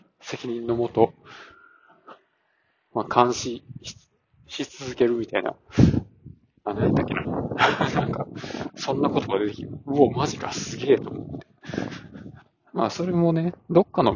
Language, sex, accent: Japanese, male, native